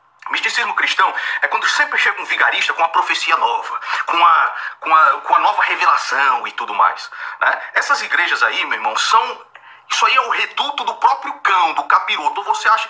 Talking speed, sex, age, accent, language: 195 wpm, male, 40-59, Brazilian, Portuguese